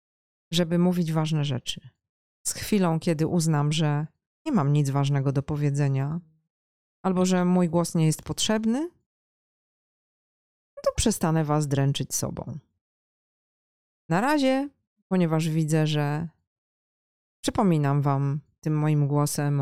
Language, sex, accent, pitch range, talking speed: Polish, female, native, 145-180 Hz, 115 wpm